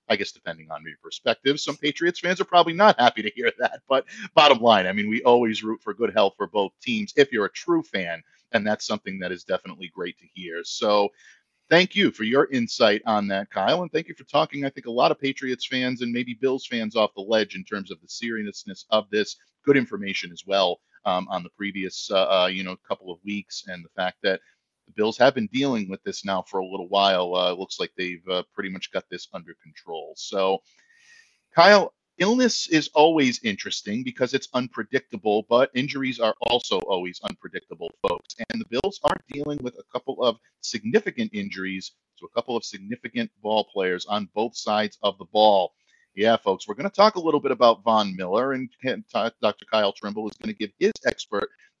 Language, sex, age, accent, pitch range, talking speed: English, male, 40-59, American, 105-160 Hz, 215 wpm